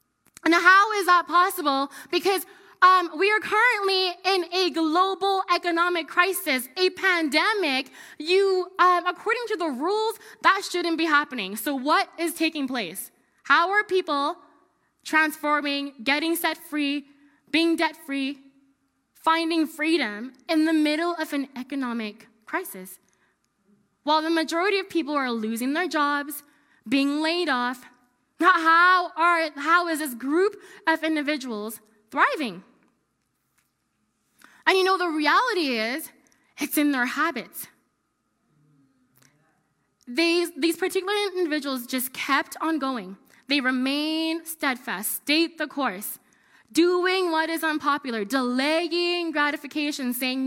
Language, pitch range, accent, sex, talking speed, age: English, 275-350 Hz, American, female, 120 wpm, 20-39